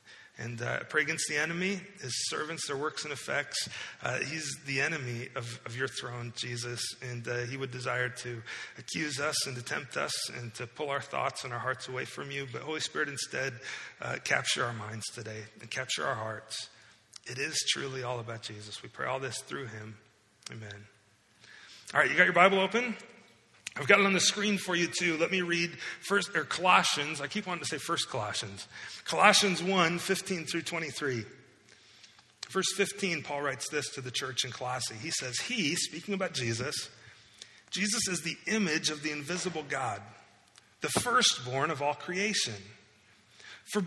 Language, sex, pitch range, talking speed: English, male, 120-180 Hz, 185 wpm